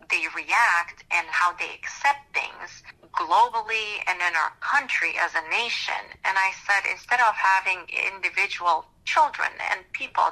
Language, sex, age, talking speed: English, female, 30-49, 145 wpm